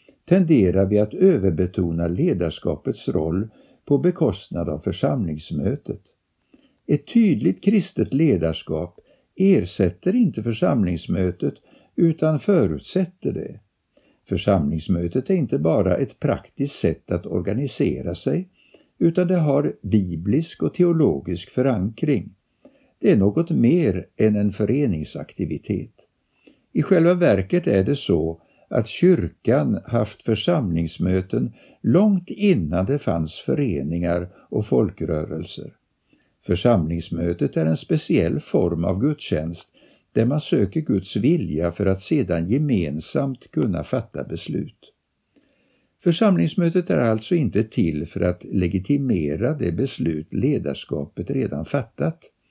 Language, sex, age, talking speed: Swedish, male, 60-79, 105 wpm